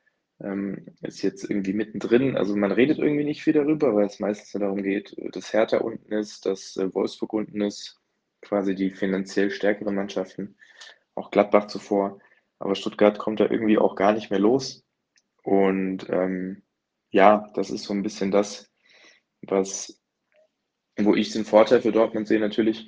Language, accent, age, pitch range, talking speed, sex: German, German, 20-39, 95-105 Hz, 155 wpm, male